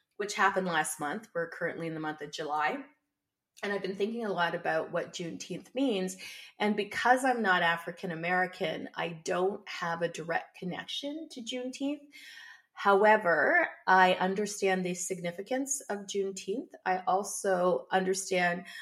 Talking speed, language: 145 wpm, English